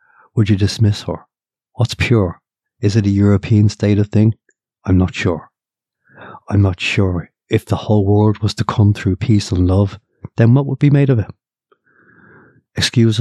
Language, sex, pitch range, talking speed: English, male, 100-120 Hz, 175 wpm